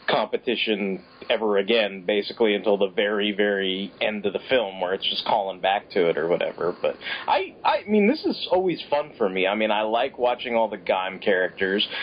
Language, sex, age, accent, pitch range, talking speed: English, male, 30-49, American, 105-130 Hz, 200 wpm